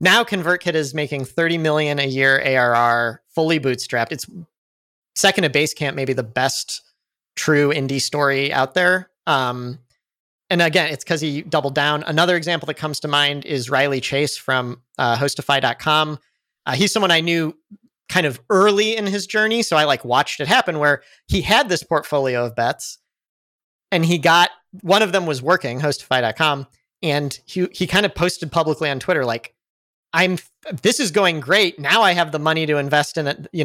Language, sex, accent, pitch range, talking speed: English, male, American, 135-175 Hz, 180 wpm